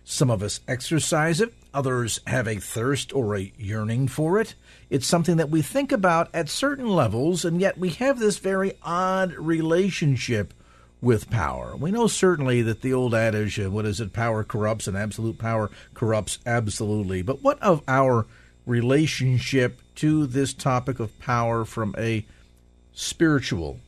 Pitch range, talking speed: 105-155 Hz, 160 wpm